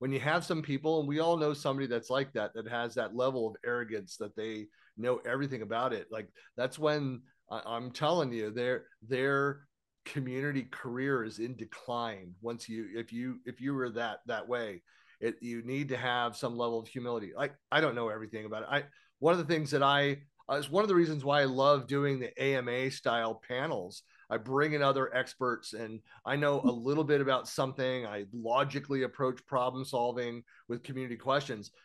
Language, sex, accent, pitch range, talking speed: English, male, American, 120-145 Hz, 200 wpm